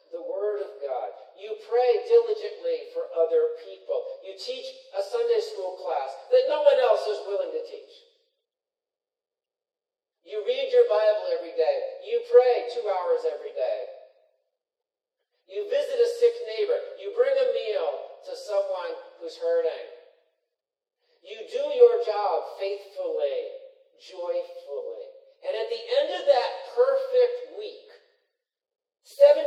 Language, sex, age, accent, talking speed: English, male, 50-69, American, 130 wpm